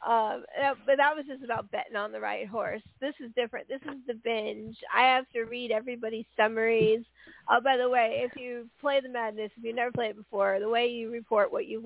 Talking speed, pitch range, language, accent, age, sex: 235 wpm, 215-260 Hz, English, American, 40-59, female